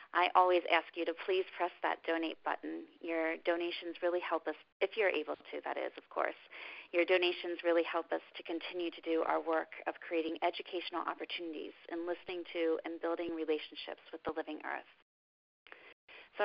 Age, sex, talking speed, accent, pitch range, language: 30-49, female, 180 wpm, American, 165-200 Hz, English